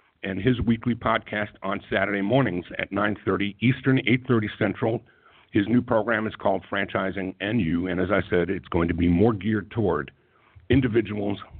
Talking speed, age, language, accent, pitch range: 165 wpm, 60-79, English, American, 95-120 Hz